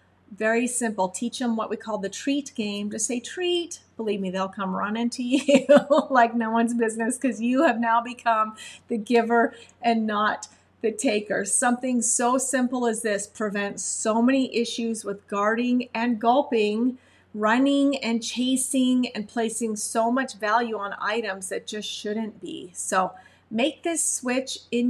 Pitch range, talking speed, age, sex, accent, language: 190-235 Hz, 160 wpm, 40-59, female, American, English